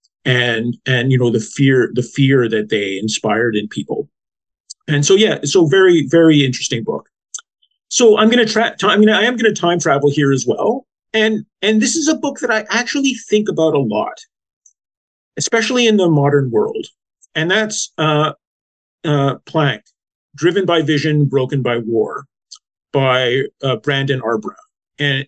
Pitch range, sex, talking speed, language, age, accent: 125-210 Hz, male, 165 wpm, English, 40-59, American